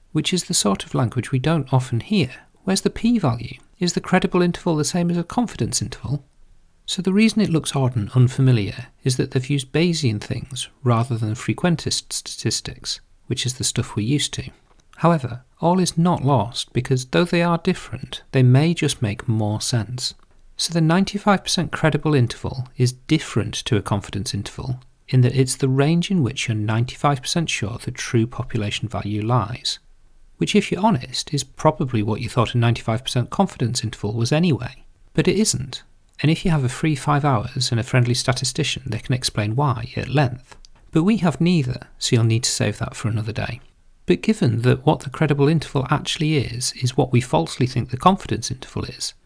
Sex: male